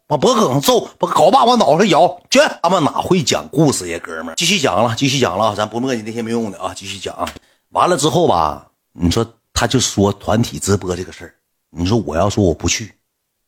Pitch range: 90-120 Hz